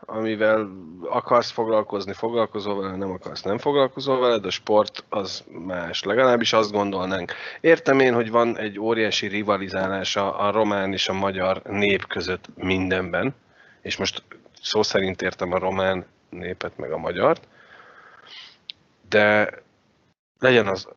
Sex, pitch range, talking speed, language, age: male, 95-115 Hz, 130 wpm, Hungarian, 30-49